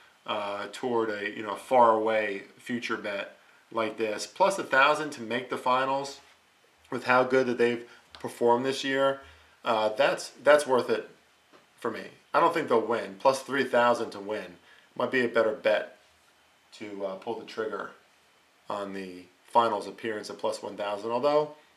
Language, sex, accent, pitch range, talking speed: English, male, American, 115-135 Hz, 170 wpm